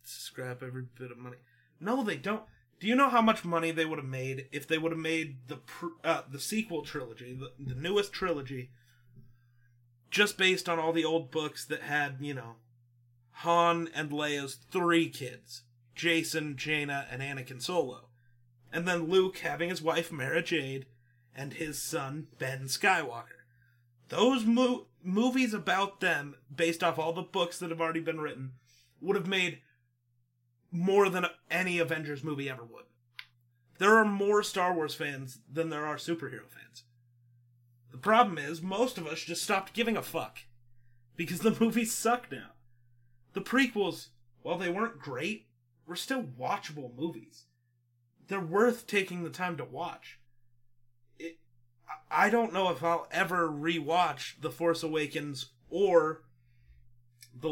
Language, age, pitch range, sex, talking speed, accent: English, 30-49, 125-175 Hz, male, 155 wpm, American